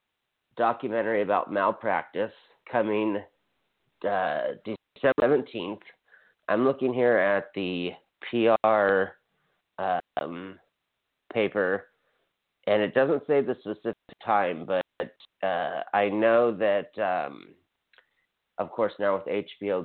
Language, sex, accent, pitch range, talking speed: English, male, American, 100-115 Hz, 100 wpm